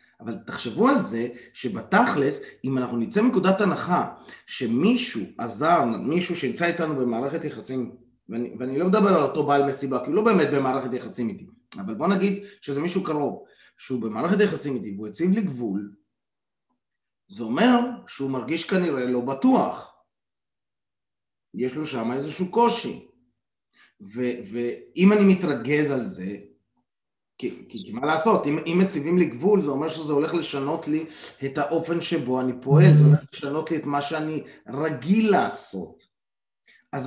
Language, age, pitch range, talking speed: Hebrew, 30-49, 125-175 Hz, 150 wpm